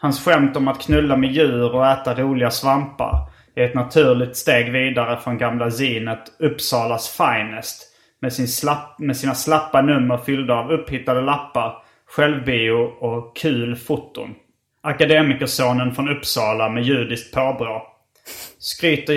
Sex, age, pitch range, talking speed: male, 30-49, 120-145 Hz, 130 wpm